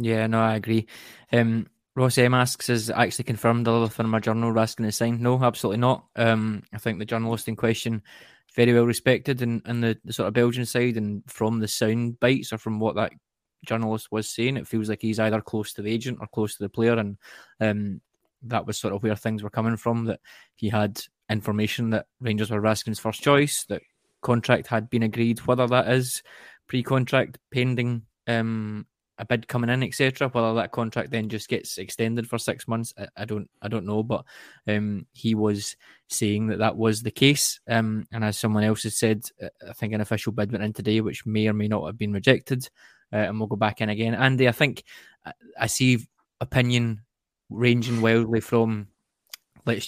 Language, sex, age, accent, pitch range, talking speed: English, male, 20-39, British, 110-120 Hz, 205 wpm